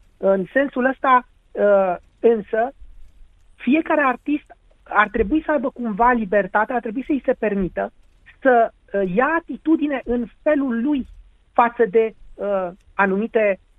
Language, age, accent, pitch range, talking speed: Romanian, 30-49, native, 195-260 Hz, 120 wpm